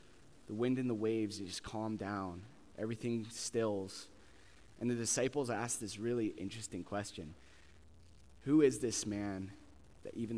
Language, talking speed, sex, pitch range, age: English, 140 wpm, male, 105-120 Hz, 20-39